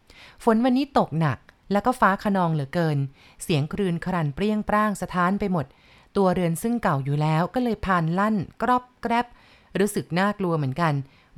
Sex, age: female, 30-49